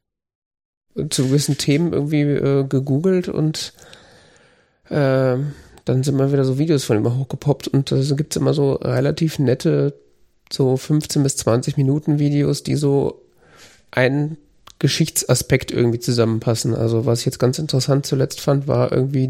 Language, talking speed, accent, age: German, 145 wpm, German, 40-59